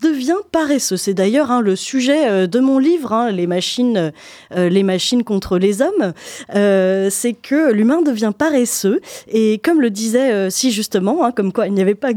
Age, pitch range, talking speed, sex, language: 20-39, 200-280 Hz, 190 wpm, female, French